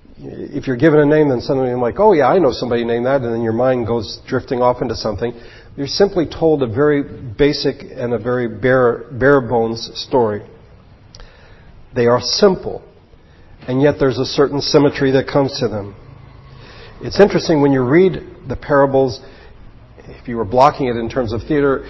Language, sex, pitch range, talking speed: English, male, 120-150 Hz, 180 wpm